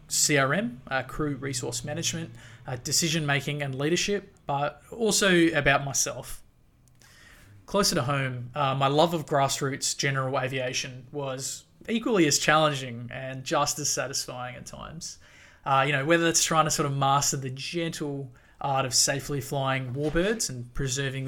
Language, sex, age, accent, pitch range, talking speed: English, male, 20-39, Australian, 135-155 Hz, 145 wpm